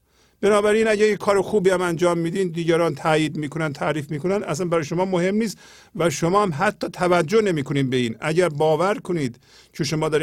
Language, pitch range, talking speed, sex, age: Persian, 155-200 Hz, 180 wpm, male, 50-69